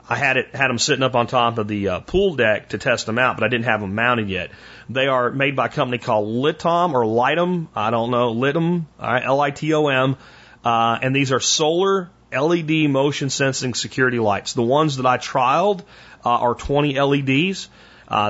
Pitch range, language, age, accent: 120-145 Hz, English, 30-49, American